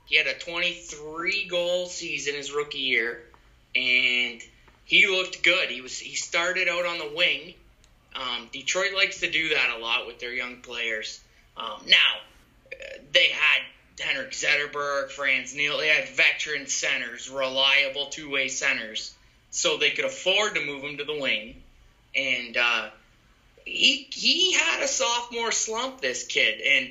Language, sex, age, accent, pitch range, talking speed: English, male, 20-39, American, 130-195 Hz, 160 wpm